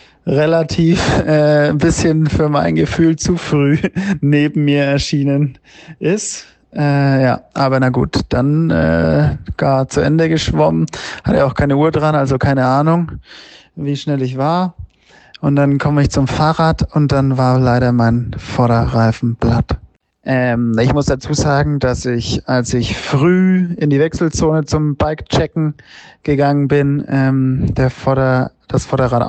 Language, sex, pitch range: German, male, 125-150 Hz